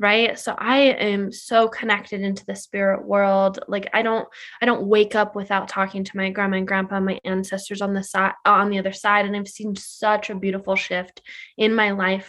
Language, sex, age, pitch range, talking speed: English, female, 10-29, 195-230 Hz, 210 wpm